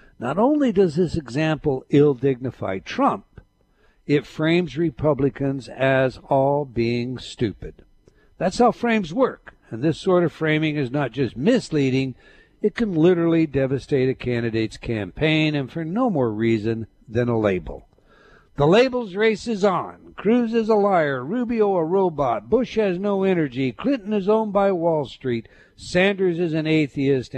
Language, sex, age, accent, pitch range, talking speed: English, male, 60-79, American, 130-190 Hz, 150 wpm